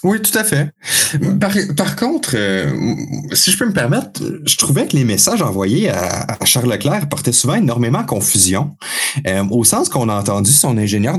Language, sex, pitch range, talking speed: French, male, 125-175 Hz, 190 wpm